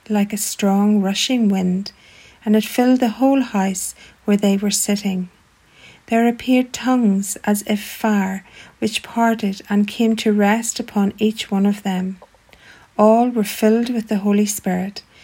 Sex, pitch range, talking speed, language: female, 190-220 Hz, 155 wpm, English